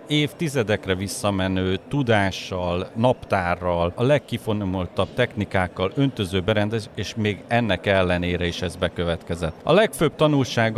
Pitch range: 90-120 Hz